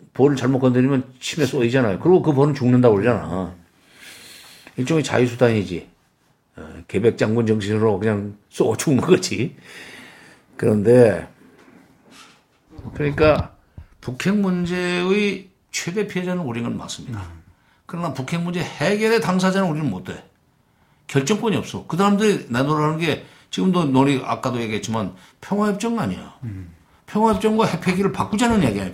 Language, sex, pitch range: Korean, male, 115-185 Hz